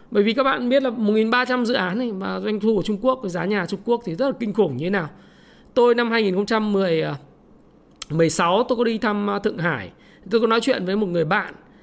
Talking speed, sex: 240 wpm, male